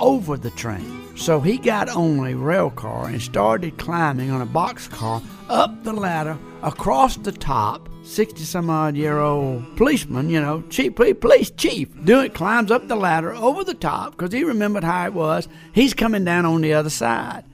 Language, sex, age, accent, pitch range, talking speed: English, male, 60-79, American, 135-195 Hz, 190 wpm